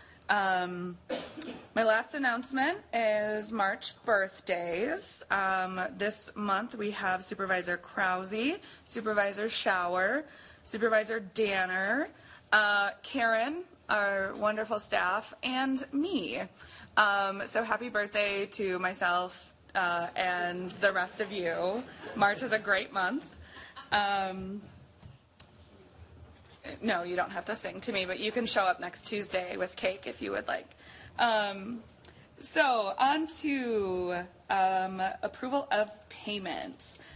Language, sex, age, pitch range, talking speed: English, female, 20-39, 185-220 Hz, 115 wpm